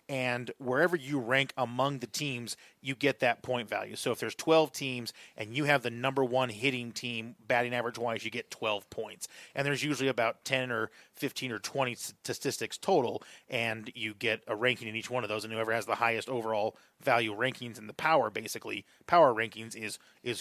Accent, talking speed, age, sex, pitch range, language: American, 200 wpm, 30-49, male, 120-145 Hz, English